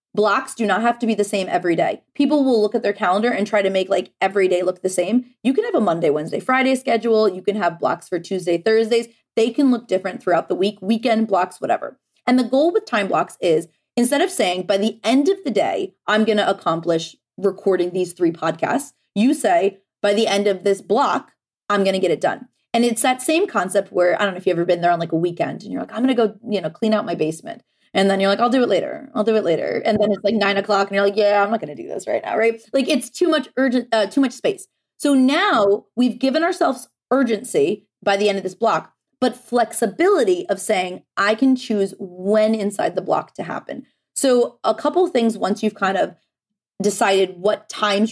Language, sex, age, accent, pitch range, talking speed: English, female, 20-39, American, 195-250 Hz, 245 wpm